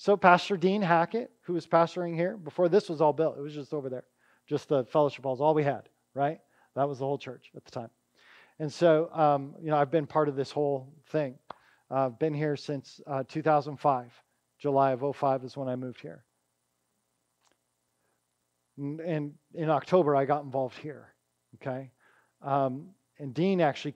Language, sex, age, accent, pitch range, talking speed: English, male, 40-59, American, 140-200 Hz, 185 wpm